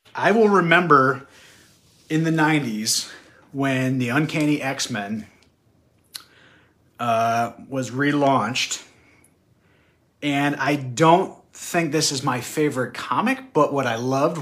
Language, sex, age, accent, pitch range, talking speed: English, male, 30-49, American, 120-145 Hz, 105 wpm